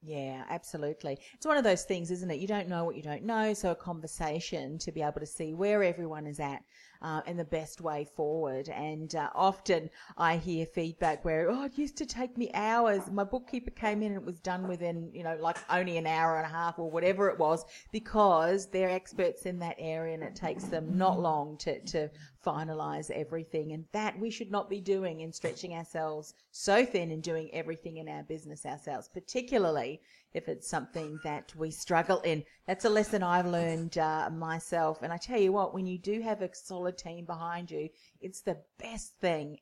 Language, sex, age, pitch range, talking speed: English, female, 40-59, 160-205 Hz, 210 wpm